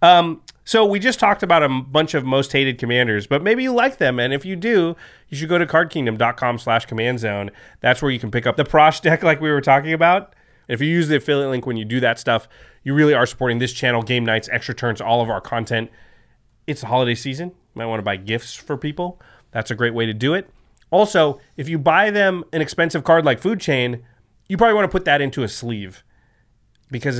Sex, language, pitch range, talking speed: male, English, 110-155 Hz, 240 wpm